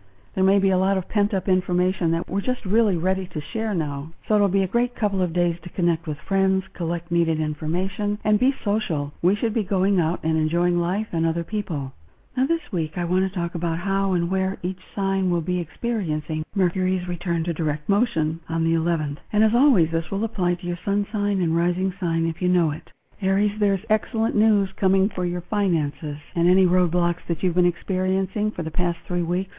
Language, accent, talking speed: English, American, 215 wpm